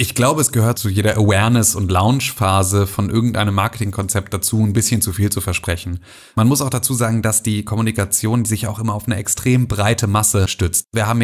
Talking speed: 210 wpm